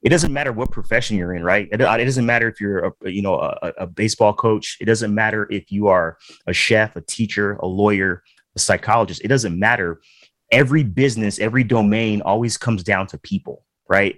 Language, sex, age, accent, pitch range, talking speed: English, male, 30-49, American, 95-115 Hz, 205 wpm